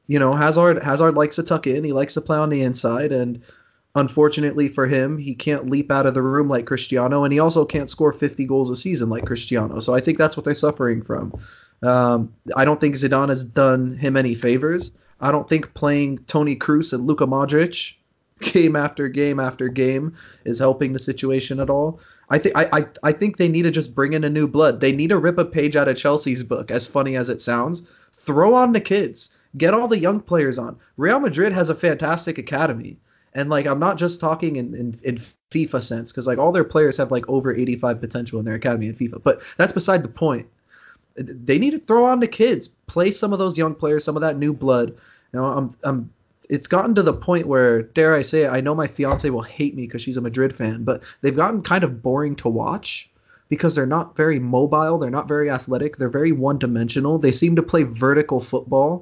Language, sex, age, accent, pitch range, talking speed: English, male, 20-39, American, 130-155 Hz, 225 wpm